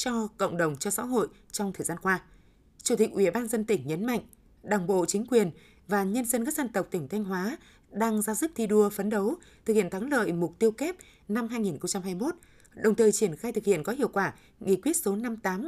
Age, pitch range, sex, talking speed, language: 20-39, 190-230 Hz, female, 240 wpm, Vietnamese